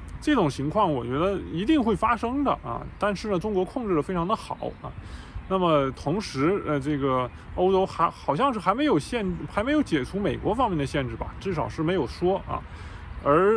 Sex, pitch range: male, 140-190 Hz